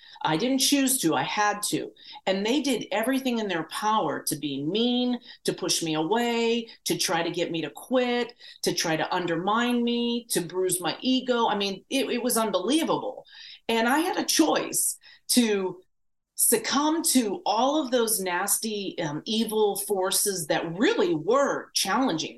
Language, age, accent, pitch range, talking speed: English, 40-59, American, 195-275 Hz, 165 wpm